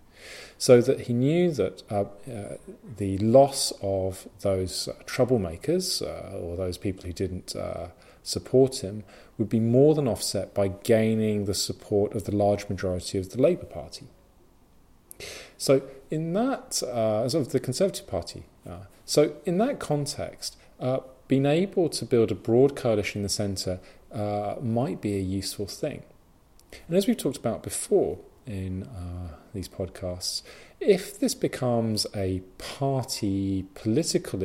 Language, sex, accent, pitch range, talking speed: English, male, British, 95-125 Hz, 150 wpm